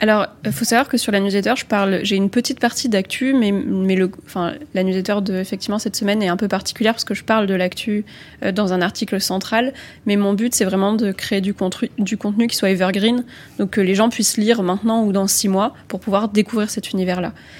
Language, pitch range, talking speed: French, 190-220 Hz, 240 wpm